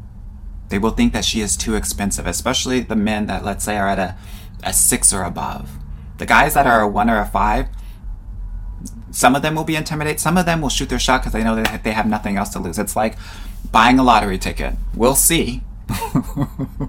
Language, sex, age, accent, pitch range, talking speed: English, male, 30-49, American, 95-115 Hz, 215 wpm